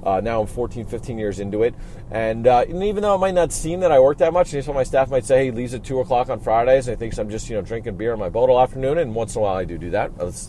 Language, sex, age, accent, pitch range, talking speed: English, male, 40-59, American, 105-135 Hz, 345 wpm